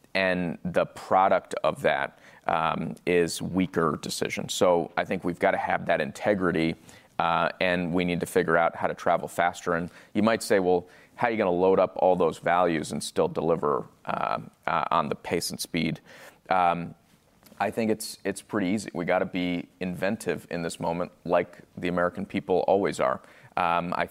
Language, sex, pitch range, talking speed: English, male, 85-95 Hz, 185 wpm